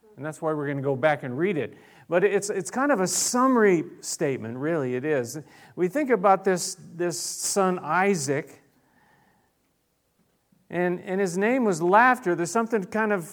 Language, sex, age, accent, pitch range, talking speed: English, male, 40-59, American, 120-185 Hz, 175 wpm